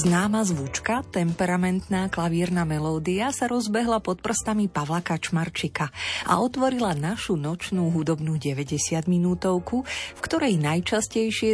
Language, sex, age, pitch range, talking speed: Slovak, female, 30-49, 160-205 Hz, 110 wpm